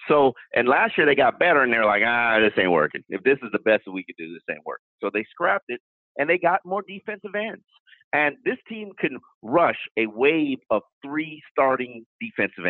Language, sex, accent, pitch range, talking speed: English, male, American, 125-200 Hz, 225 wpm